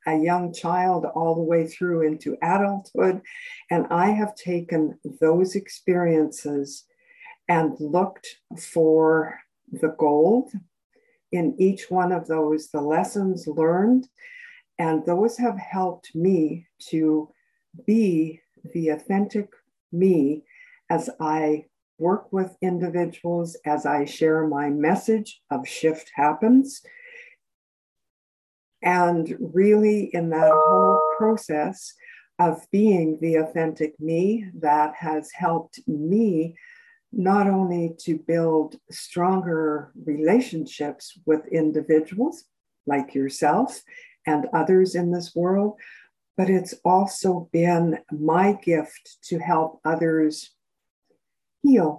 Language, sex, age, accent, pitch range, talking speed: English, female, 60-79, American, 155-200 Hz, 105 wpm